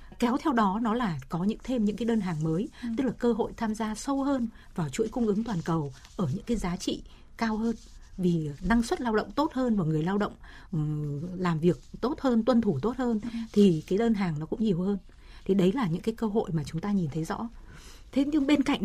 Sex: female